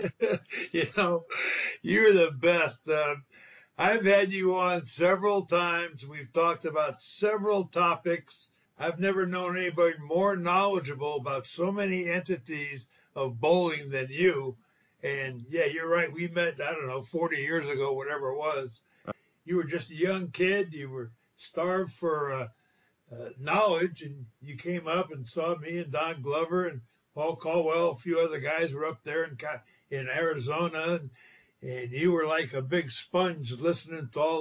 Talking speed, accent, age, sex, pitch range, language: 165 wpm, American, 60-79, male, 150-185 Hz, English